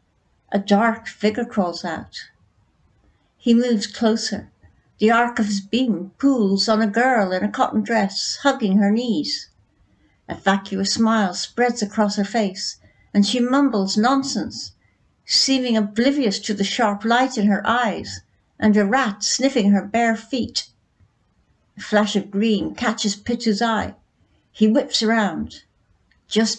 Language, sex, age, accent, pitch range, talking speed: English, female, 60-79, British, 200-235 Hz, 140 wpm